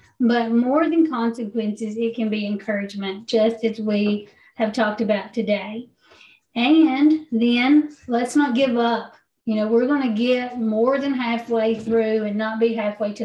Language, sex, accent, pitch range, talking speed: English, female, American, 220-250 Hz, 165 wpm